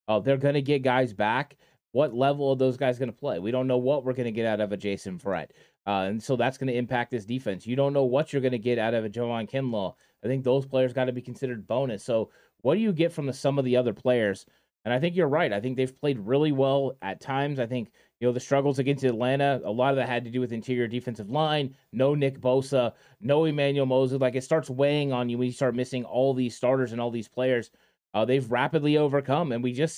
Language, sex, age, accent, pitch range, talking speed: English, male, 30-49, American, 125-140 Hz, 265 wpm